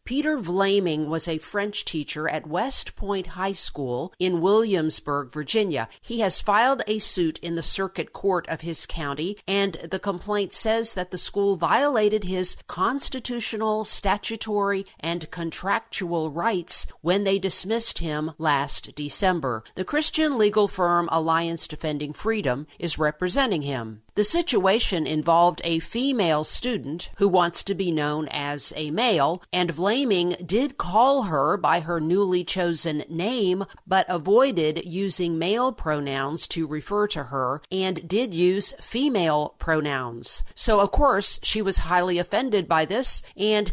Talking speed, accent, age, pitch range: 145 wpm, American, 50-69, 160-205 Hz